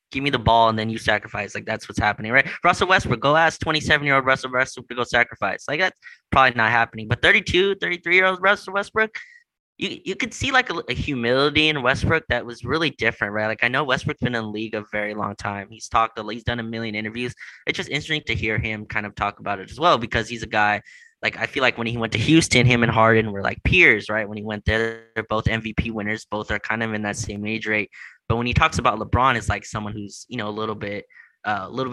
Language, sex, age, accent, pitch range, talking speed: English, male, 20-39, American, 110-125 Hz, 260 wpm